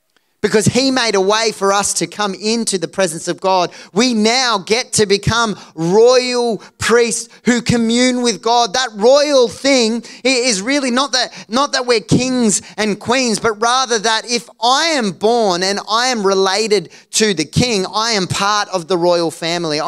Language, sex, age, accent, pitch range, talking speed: English, male, 30-49, Australian, 165-220 Hz, 180 wpm